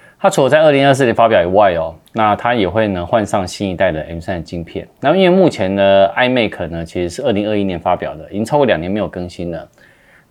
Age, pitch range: 20-39, 90-130 Hz